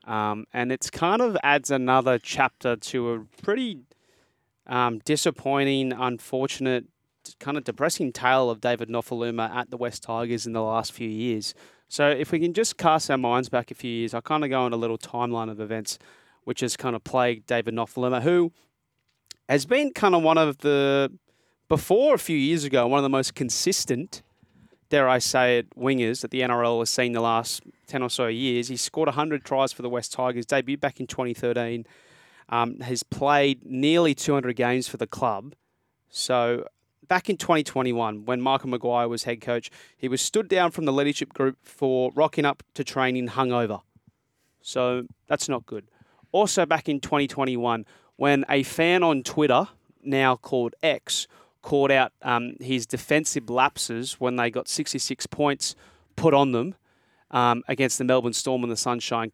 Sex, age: male, 30-49